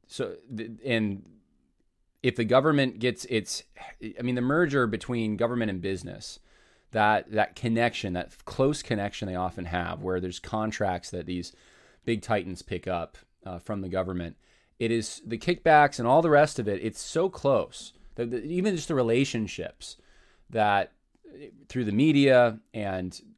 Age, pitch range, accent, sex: 20-39, 95-120 Hz, American, male